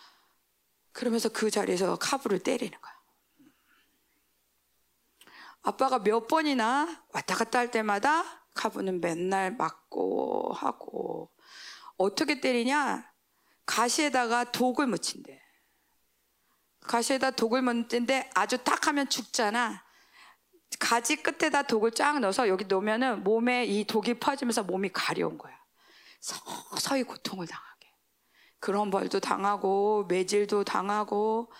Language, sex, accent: Korean, female, native